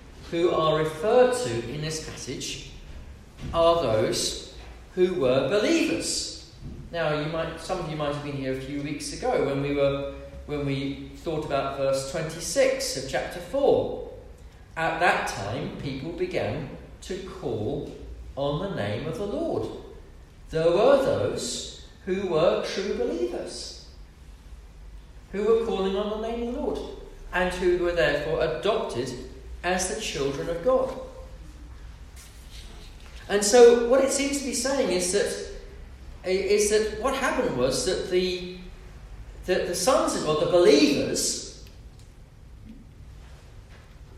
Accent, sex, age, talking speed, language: British, male, 40-59, 135 wpm, English